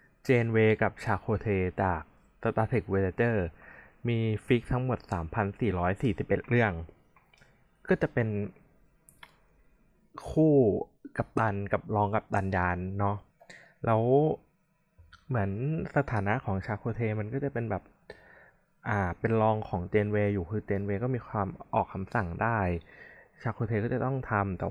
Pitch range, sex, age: 100-125 Hz, male, 20-39